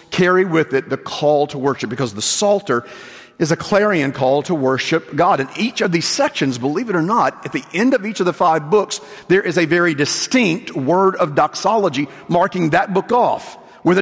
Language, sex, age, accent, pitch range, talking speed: English, male, 50-69, American, 140-190 Hz, 205 wpm